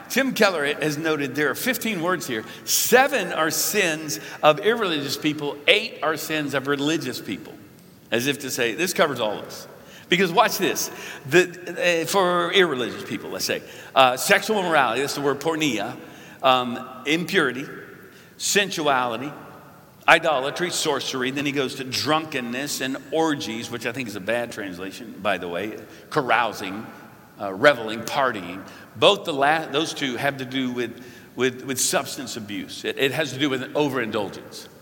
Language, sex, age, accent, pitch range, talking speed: English, male, 50-69, American, 125-175 Hz, 155 wpm